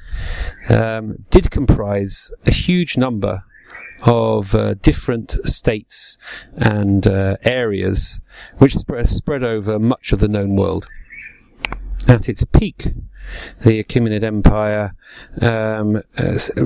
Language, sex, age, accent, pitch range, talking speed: English, male, 40-59, British, 100-120 Hz, 105 wpm